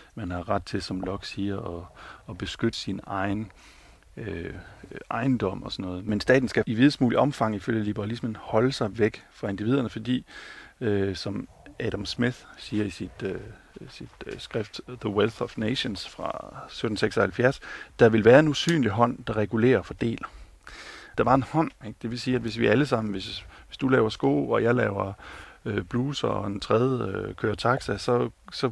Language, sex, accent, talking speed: Danish, male, native, 180 wpm